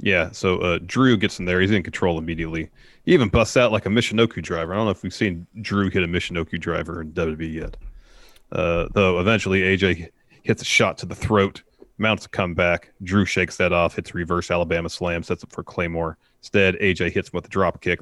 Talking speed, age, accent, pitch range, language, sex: 220 wpm, 30-49, American, 85-105 Hz, English, male